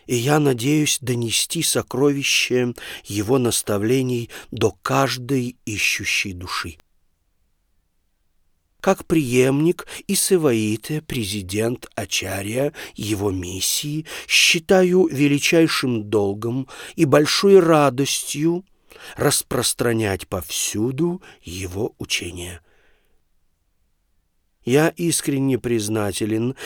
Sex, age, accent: male, 40-59, native